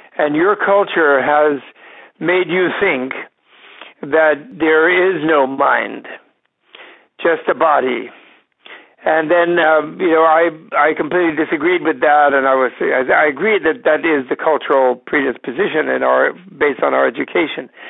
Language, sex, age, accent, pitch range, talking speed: English, male, 60-79, American, 140-175 Hz, 145 wpm